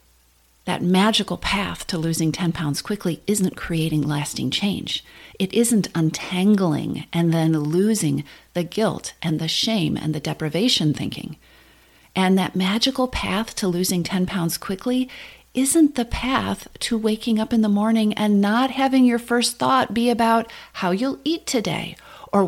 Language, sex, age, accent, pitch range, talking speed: English, female, 40-59, American, 170-235 Hz, 155 wpm